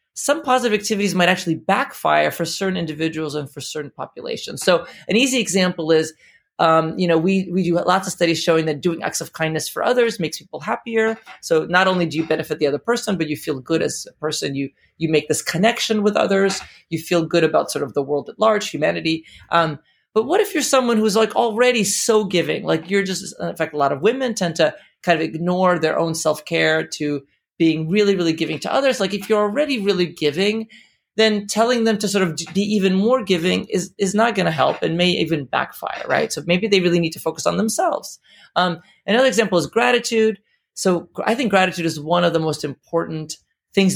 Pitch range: 160-210 Hz